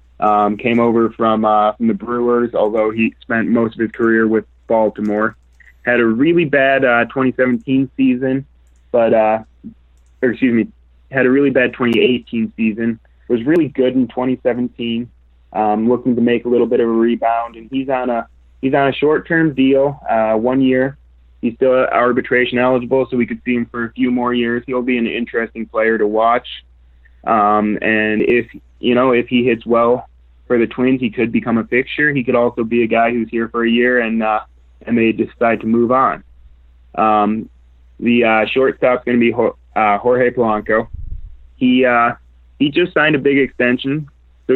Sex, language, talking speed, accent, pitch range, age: male, English, 185 wpm, American, 110-125 Hz, 20-39